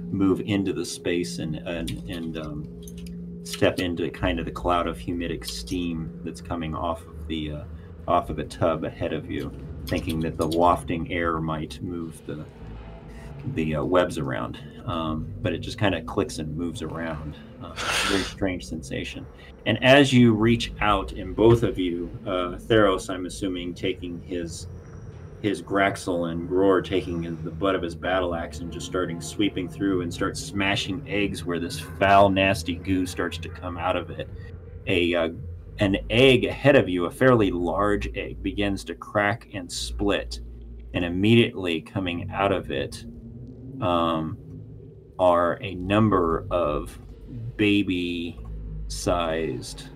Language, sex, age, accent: English, male, 30-49, American